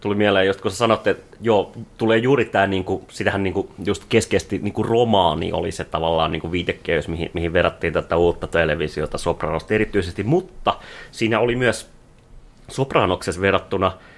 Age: 30-49